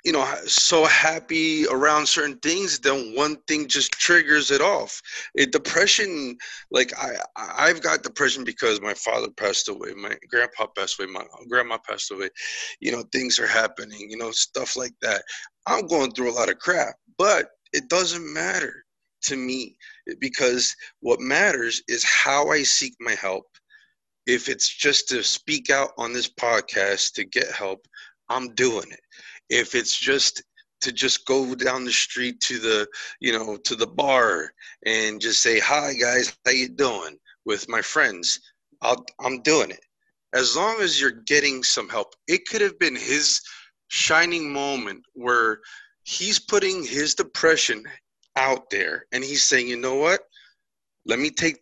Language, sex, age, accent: English, male, 20-39, American